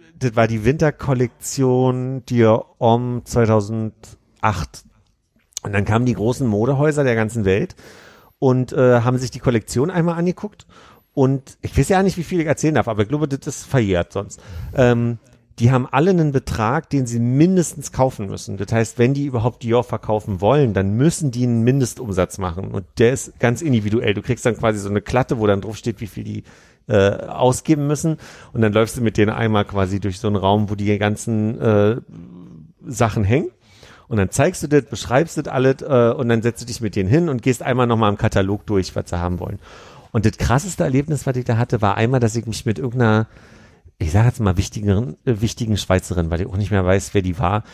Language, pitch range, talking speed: German, 105-130 Hz, 205 wpm